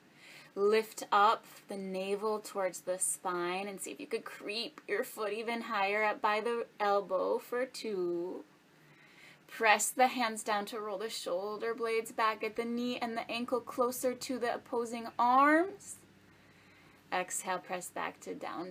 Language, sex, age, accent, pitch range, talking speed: English, female, 20-39, American, 180-235 Hz, 155 wpm